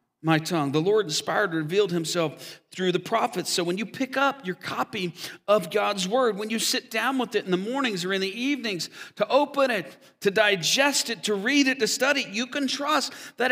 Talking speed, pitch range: 220 wpm, 200-265 Hz